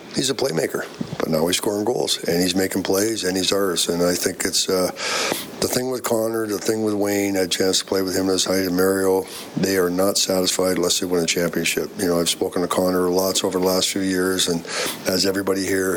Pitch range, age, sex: 90-100 Hz, 50-69, male